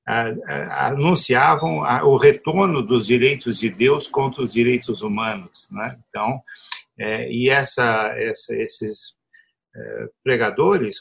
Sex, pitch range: male, 115-190 Hz